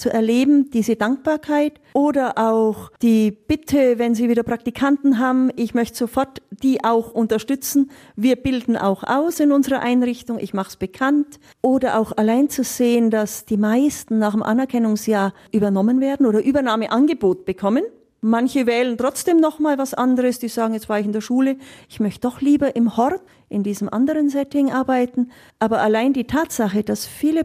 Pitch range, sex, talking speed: 215-265 Hz, female, 170 wpm